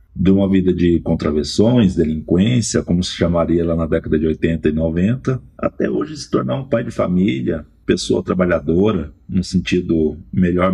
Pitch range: 80-95 Hz